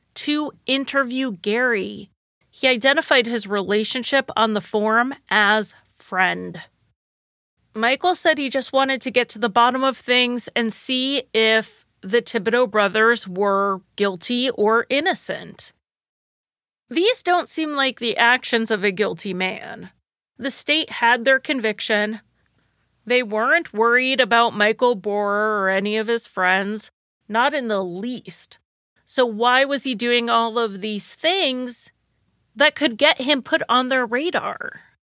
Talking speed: 140 wpm